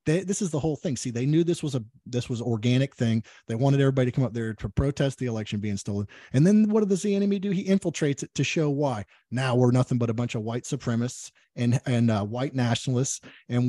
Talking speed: 245 wpm